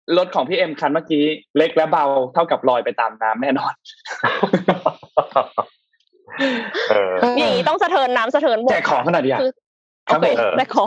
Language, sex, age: Thai, male, 20-39